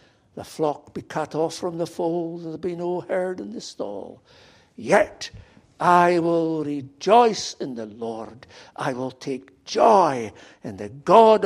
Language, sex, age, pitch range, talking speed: English, male, 60-79, 130-185 Hz, 150 wpm